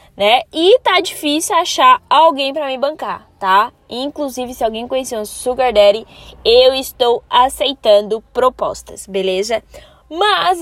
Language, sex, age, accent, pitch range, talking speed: Portuguese, female, 10-29, Brazilian, 230-320 Hz, 135 wpm